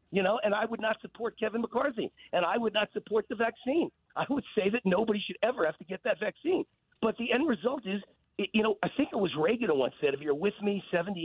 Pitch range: 160-235 Hz